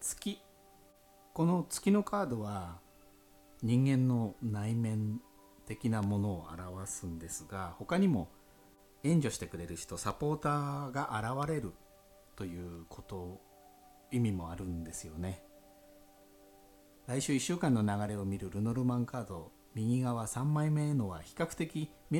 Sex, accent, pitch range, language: male, native, 100-130 Hz, Japanese